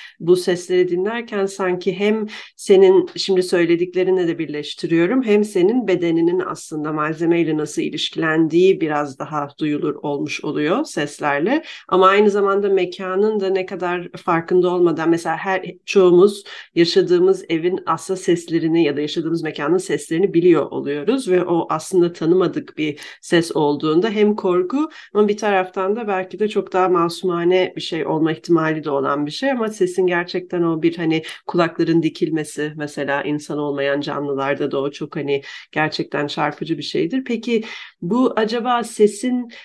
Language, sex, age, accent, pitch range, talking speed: Turkish, female, 40-59, native, 160-200 Hz, 145 wpm